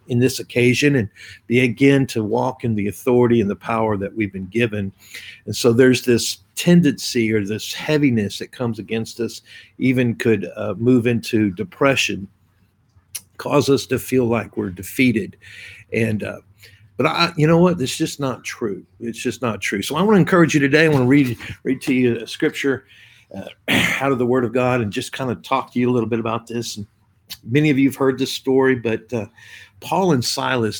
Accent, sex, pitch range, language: American, male, 105-130 Hz, English